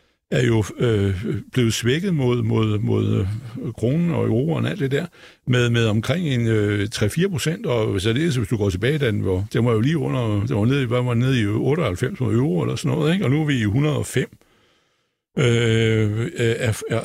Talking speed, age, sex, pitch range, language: 190 wpm, 60-79, male, 115-145 Hz, Danish